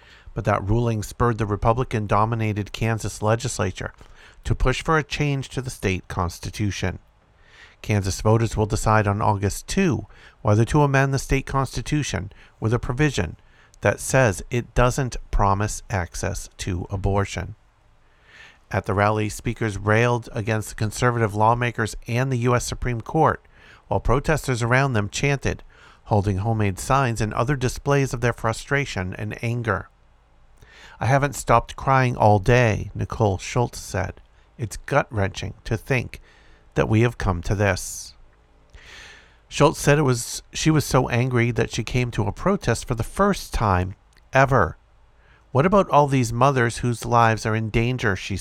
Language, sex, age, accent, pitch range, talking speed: English, male, 50-69, American, 100-125 Hz, 150 wpm